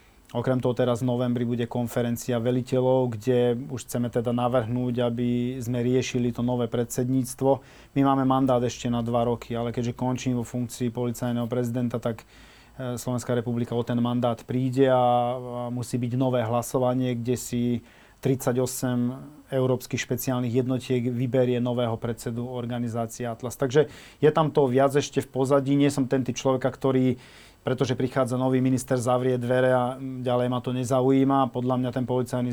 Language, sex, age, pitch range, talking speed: Slovak, male, 30-49, 120-130 Hz, 155 wpm